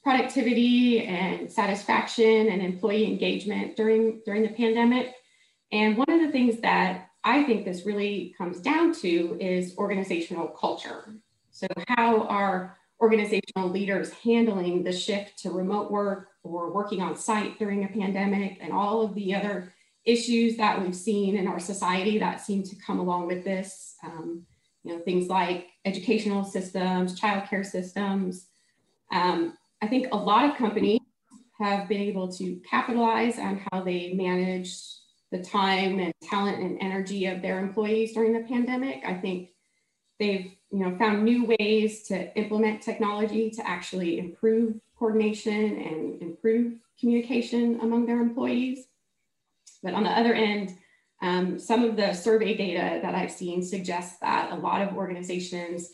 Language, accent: English, American